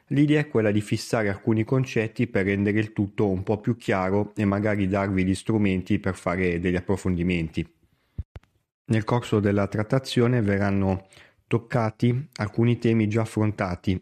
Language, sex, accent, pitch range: Italian, male, native, 100-130 Hz